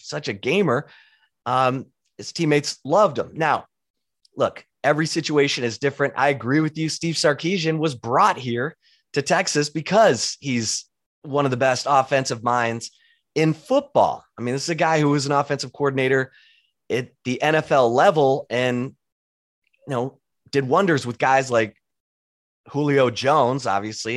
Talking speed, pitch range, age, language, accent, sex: 150 wpm, 115-145 Hz, 30-49, English, American, male